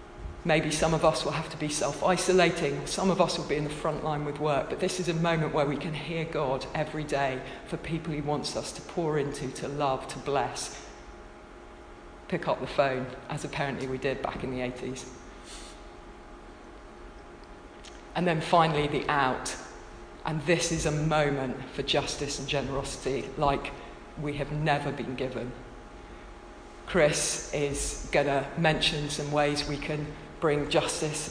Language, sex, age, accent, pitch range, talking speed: English, female, 40-59, British, 140-165 Hz, 165 wpm